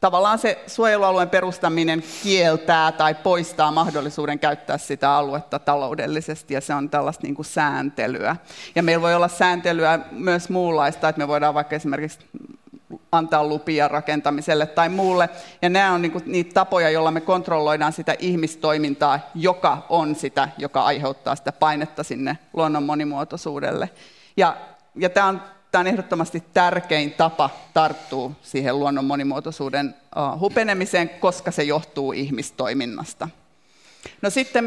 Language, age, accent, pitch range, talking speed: Finnish, 30-49, native, 155-180 Hz, 130 wpm